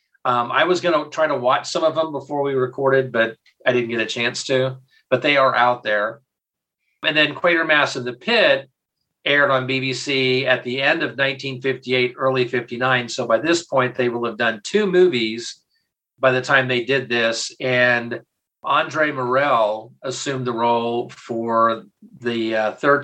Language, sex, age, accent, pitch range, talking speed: English, male, 40-59, American, 120-145 Hz, 175 wpm